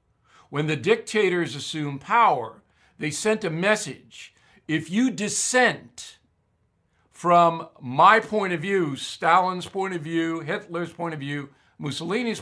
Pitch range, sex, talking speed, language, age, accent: 135-215 Hz, male, 125 wpm, English, 60-79, American